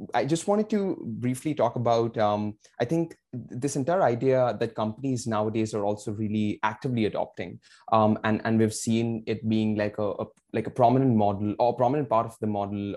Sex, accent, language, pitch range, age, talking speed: male, Indian, English, 105-125 Hz, 20-39, 190 wpm